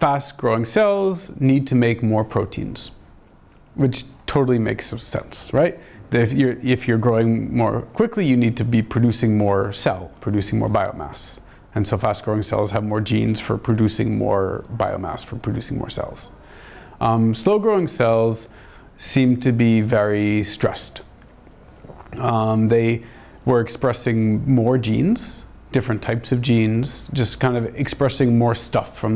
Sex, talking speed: male, 140 wpm